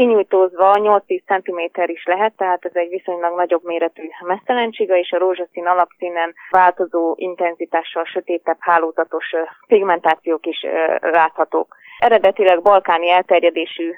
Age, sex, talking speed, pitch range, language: 20-39, female, 110 wpm, 165-185 Hz, Hungarian